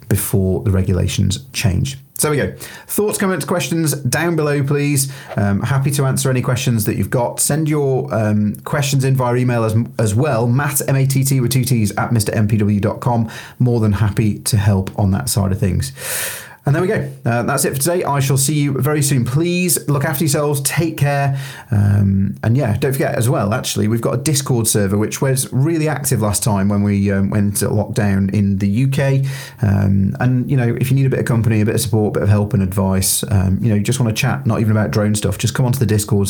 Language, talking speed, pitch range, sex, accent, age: English, 225 wpm, 105-140 Hz, male, British, 30-49